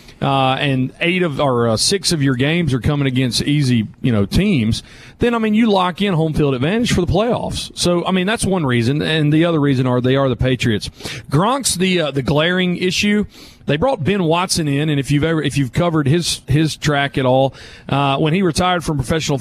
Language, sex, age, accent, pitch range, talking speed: English, male, 40-59, American, 135-180 Hz, 225 wpm